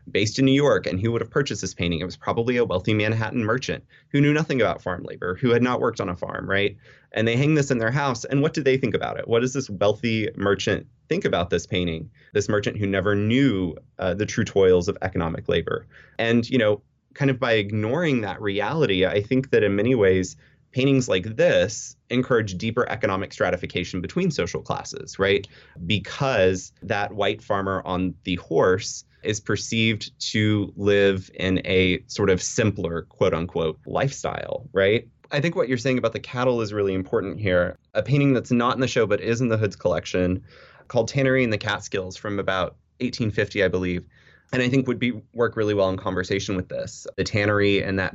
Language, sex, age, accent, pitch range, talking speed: English, male, 20-39, American, 95-120 Hz, 205 wpm